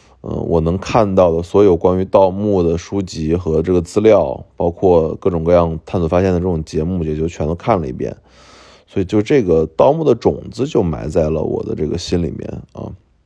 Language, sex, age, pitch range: Chinese, male, 20-39, 80-100 Hz